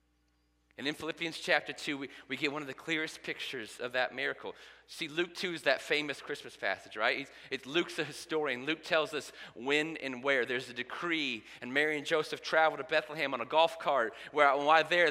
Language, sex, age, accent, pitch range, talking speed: English, male, 30-49, American, 120-160 Hz, 215 wpm